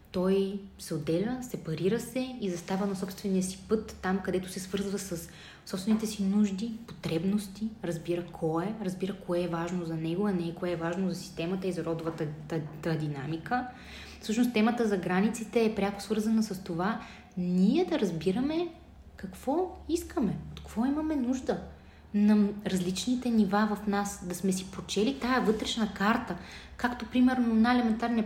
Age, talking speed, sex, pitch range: 20-39, 160 wpm, female, 180-220 Hz